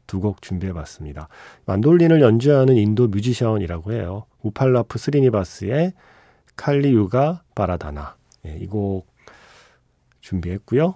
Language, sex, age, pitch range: Korean, male, 40-59, 95-135 Hz